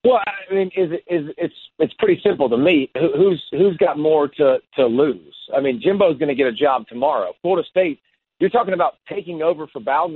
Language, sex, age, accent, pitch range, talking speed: English, male, 40-59, American, 145-195 Hz, 215 wpm